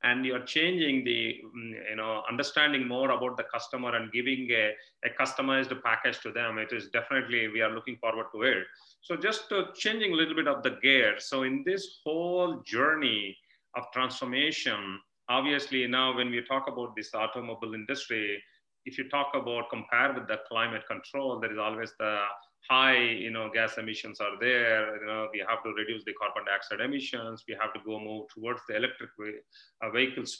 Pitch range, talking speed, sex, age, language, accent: 110-135 Hz, 185 wpm, male, 30-49, English, Indian